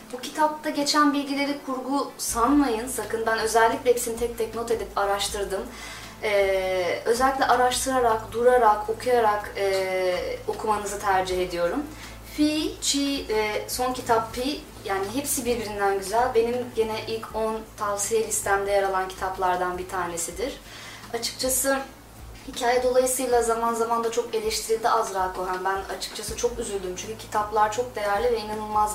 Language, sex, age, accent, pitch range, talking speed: Turkish, female, 30-49, native, 200-250 Hz, 135 wpm